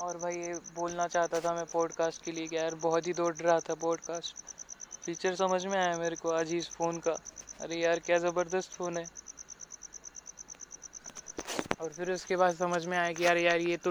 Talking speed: 135 wpm